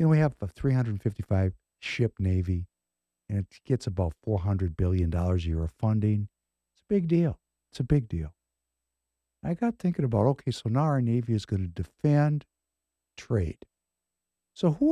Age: 60-79